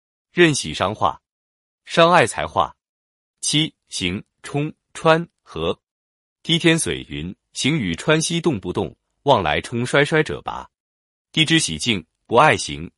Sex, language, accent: male, Chinese, native